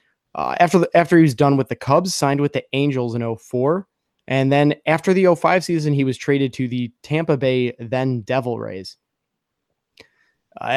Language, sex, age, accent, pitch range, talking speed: English, male, 20-39, American, 120-150 Hz, 185 wpm